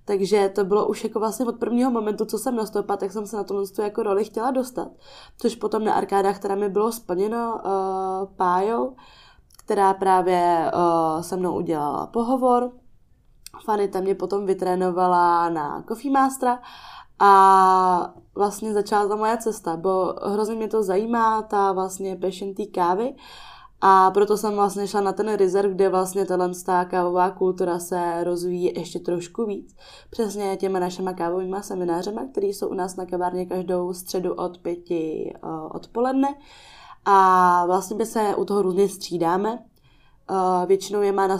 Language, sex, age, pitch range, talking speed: Czech, female, 20-39, 180-215 Hz, 155 wpm